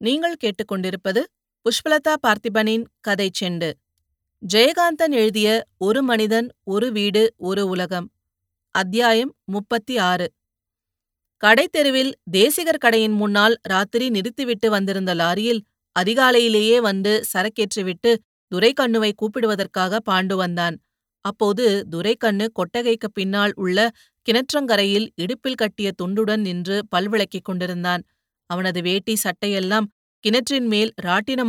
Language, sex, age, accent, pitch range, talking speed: Tamil, female, 30-49, native, 185-230 Hz, 95 wpm